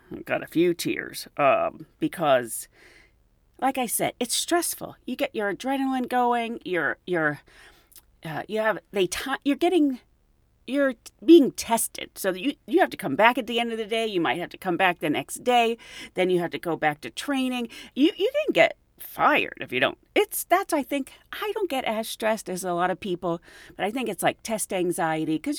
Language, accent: English, American